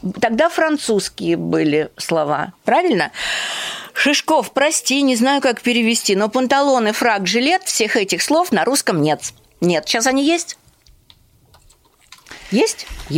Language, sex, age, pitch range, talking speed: Russian, female, 50-69, 195-280 Hz, 120 wpm